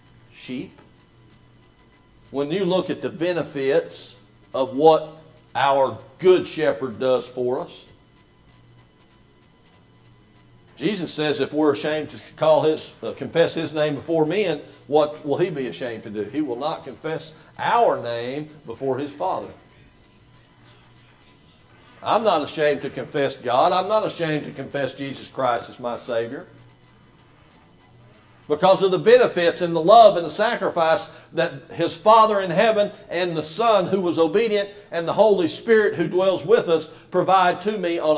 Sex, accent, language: male, American, English